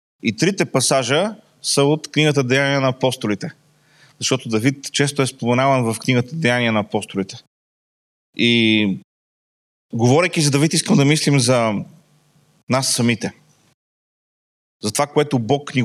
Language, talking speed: Bulgarian, 130 wpm